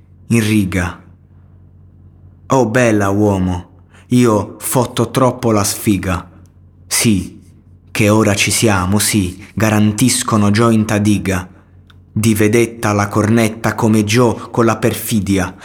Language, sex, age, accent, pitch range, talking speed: Italian, male, 30-49, native, 95-110 Hz, 105 wpm